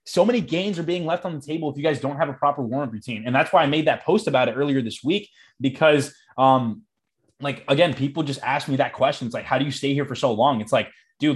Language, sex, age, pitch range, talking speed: English, male, 20-39, 120-150 Hz, 280 wpm